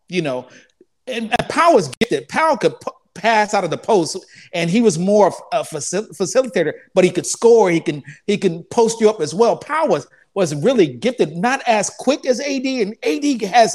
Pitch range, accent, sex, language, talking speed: 160-225 Hz, American, male, English, 205 wpm